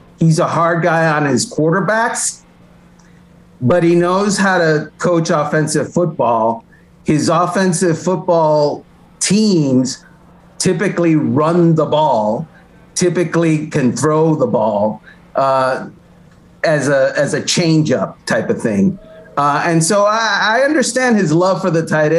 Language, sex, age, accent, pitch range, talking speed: English, male, 50-69, American, 145-175 Hz, 135 wpm